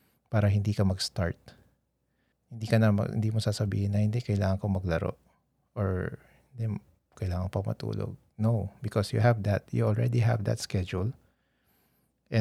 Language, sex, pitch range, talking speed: Filipino, male, 100-120 Hz, 140 wpm